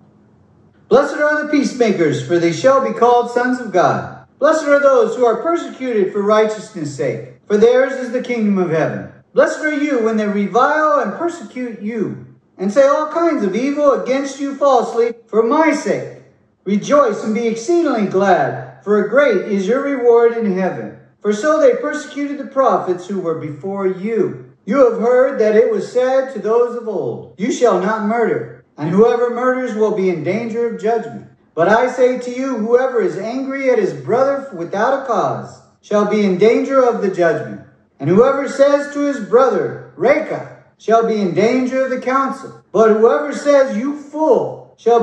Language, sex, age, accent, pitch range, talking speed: English, male, 50-69, American, 215-275 Hz, 180 wpm